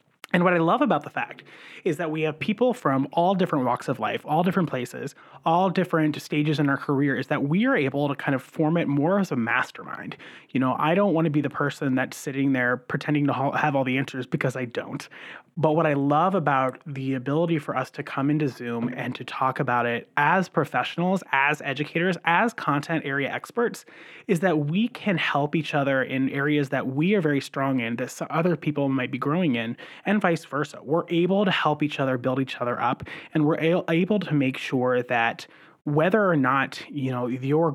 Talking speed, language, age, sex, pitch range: 215 wpm, English, 30-49, male, 130-165 Hz